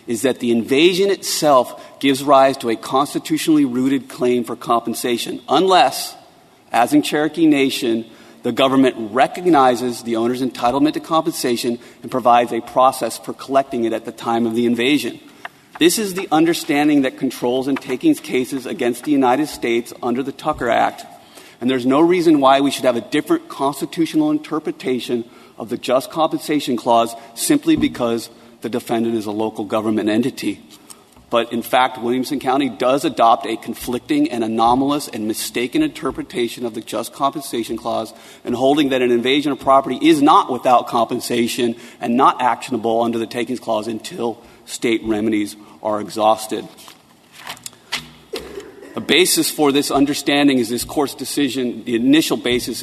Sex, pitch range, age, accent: male, 115-150 Hz, 30-49, American